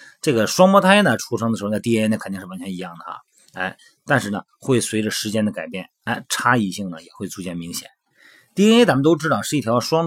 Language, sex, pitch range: Chinese, male, 105-150 Hz